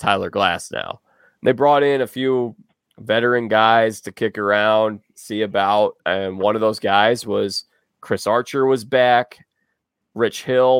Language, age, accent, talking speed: English, 20-39, American, 150 wpm